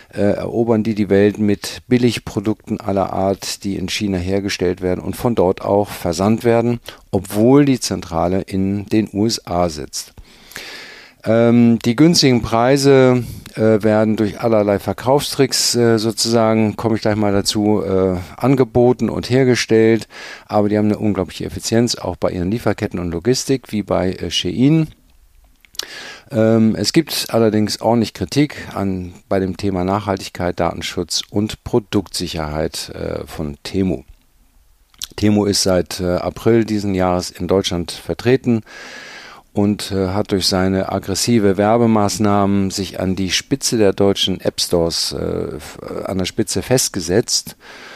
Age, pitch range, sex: 50-69, 95-115 Hz, male